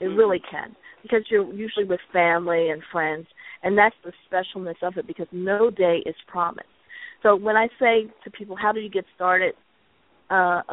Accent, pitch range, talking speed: American, 170-210 Hz, 185 wpm